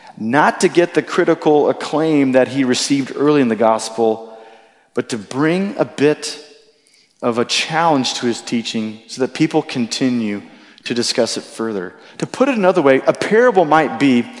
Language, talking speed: English, 170 wpm